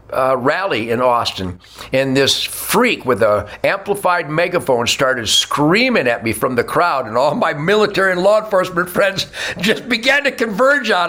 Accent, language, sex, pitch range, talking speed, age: American, English, male, 140-230 Hz, 170 wpm, 60-79